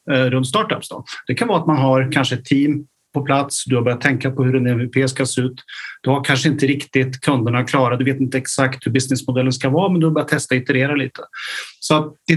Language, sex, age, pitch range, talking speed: Swedish, male, 30-49, 125-145 Hz, 245 wpm